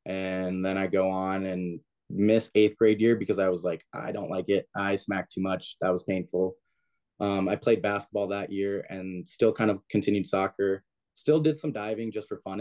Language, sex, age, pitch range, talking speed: English, male, 20-39, 95-110 Hz, 210 wpm